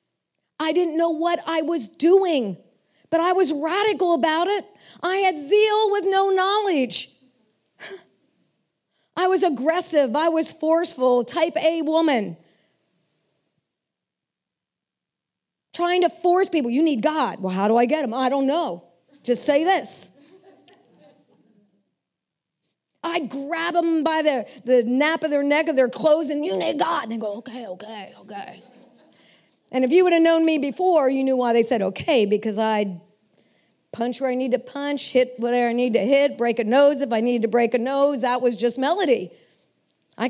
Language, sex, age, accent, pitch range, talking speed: English, female, 40-59, American, 235-325 Hz, 170 wpm